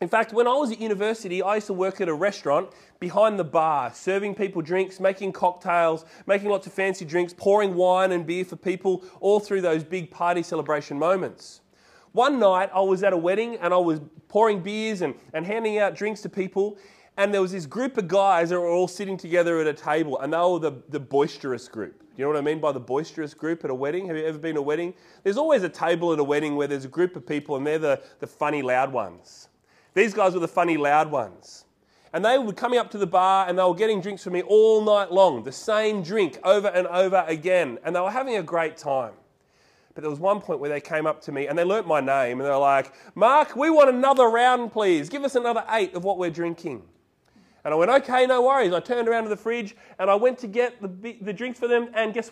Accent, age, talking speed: Australian, 30-49, 250 wpm